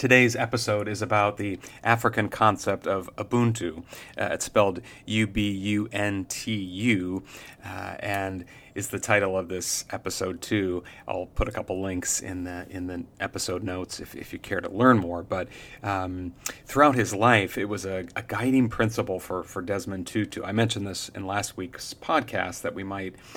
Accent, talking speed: American, 165 wpm